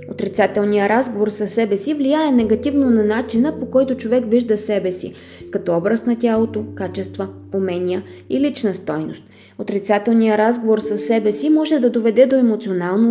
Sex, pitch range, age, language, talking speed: female, 185-235 Hz, 20-39, Bulgarian, 155 wpm